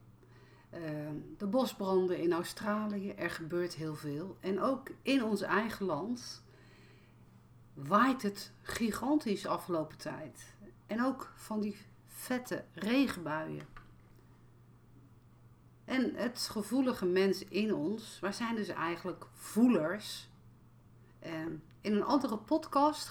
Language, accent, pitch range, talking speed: Dutch, Dutch, 145-215 Hz, 110 wpm